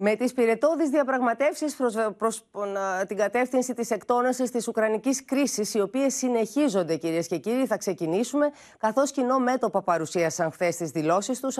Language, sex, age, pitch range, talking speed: Greek, female, 30-49, 180-250 Hz, 155 wpm